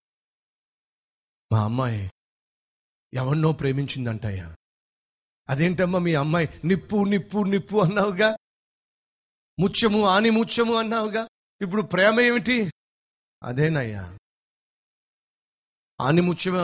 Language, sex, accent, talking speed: Telugu, male, native, 75 wpm